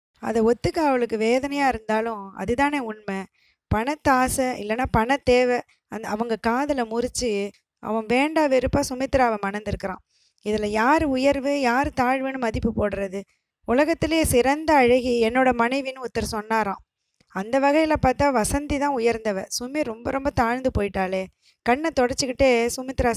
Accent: native